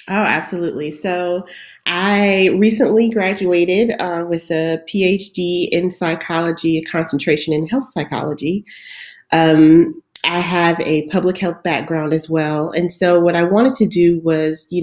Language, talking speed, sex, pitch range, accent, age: English, 140 wpm, female, 150-175 Hz, American, 30-49